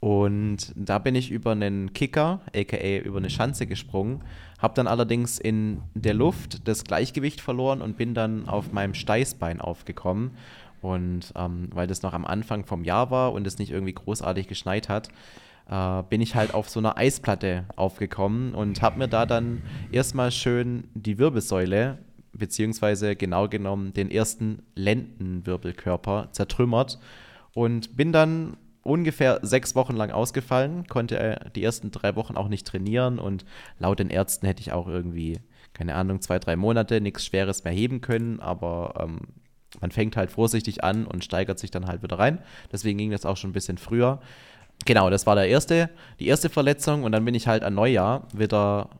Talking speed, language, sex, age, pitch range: 175 wpm, German, male, 20-39, 95-125 Hz